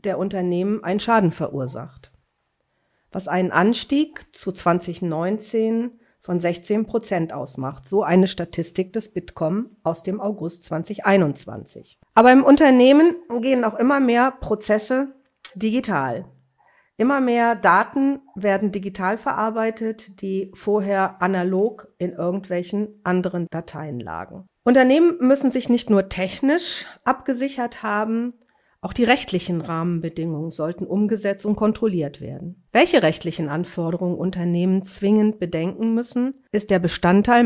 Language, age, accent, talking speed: German, 50-69, German, 115 wpm